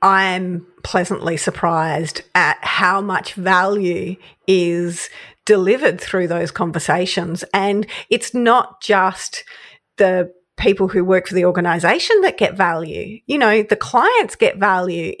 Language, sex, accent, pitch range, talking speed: English, female, Australian, 180-210 Hz, 125 wpm